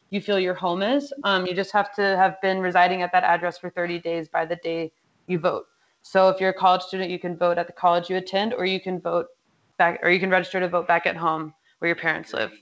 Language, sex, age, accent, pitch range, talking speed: English, female, 20-39, American, 175-200 Hz, 265 wpm